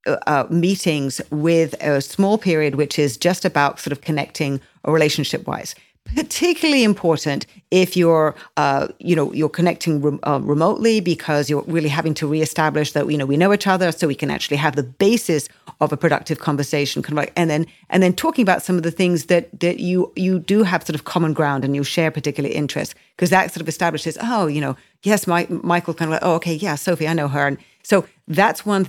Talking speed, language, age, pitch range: 210 wpm, English, 40-59, 150-185 Hz